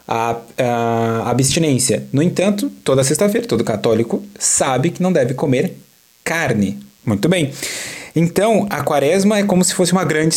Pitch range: 130-185 Hz